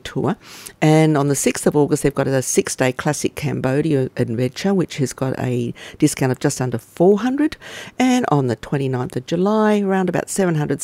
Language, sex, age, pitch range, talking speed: English, female, 50-69, 130-160 Hz, 175 wpm